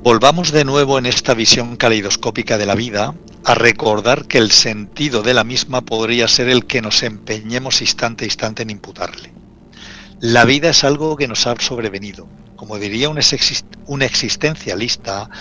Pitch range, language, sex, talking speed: 110-135 Hz, Spanish, male, 170 wpm